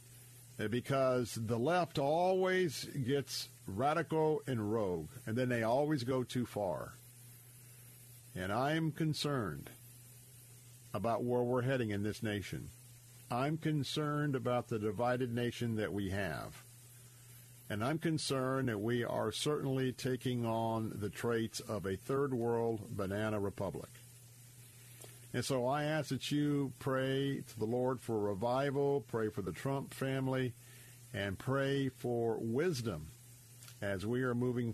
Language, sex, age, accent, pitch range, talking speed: English, male, 50-69, American, 115-130 Hz, 135 wpm